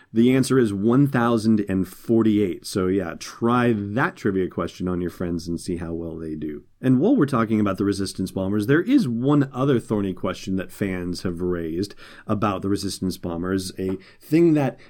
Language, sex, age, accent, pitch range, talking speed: English, male, 40-59, American, 100-130 Hz, 175 wpm